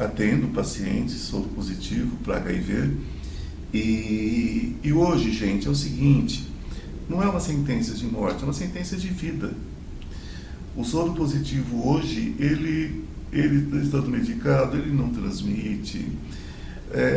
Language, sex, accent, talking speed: Portuguese, male, Brazilian, 130 wpm